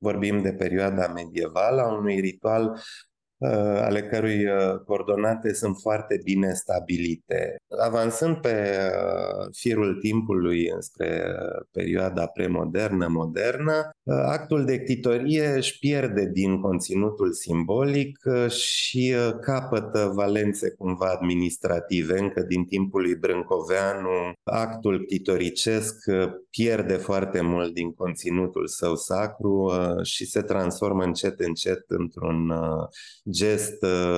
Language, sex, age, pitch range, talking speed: Romanian, male, 30-49, 90-115 Hz, 105 wpm